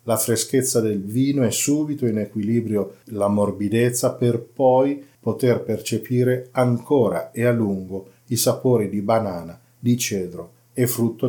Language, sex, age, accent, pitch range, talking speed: Italian, male, 40-59, native, 100-120 Hz, 140 wpm